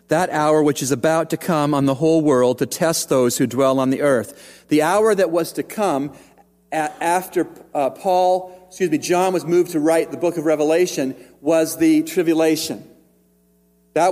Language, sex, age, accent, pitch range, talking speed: English, male, 40-59, American, 150-190 Hz, 180 wpm